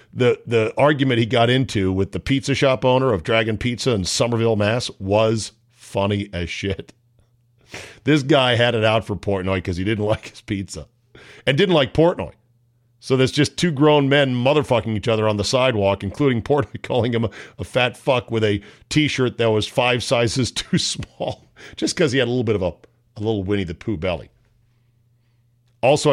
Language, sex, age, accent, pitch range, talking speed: English, male, 50-69, American, 110-135 Hz, 190 wpm